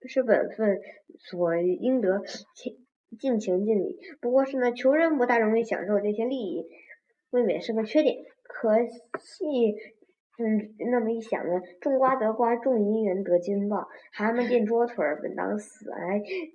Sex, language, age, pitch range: male, Chinese, 20-39, 200-270 Hz